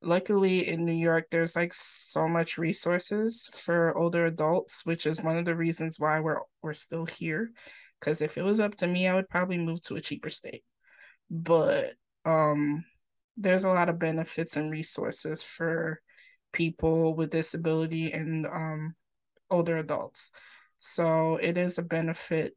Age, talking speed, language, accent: 20-39, 160 wpm, English, American